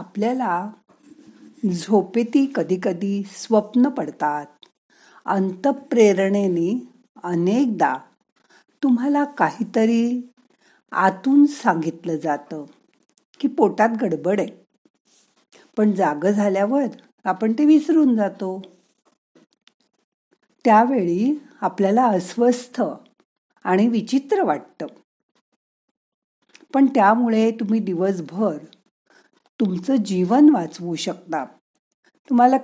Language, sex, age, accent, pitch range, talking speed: Marathi, female, 50-69, native, 185-260 Hz, 70 wpm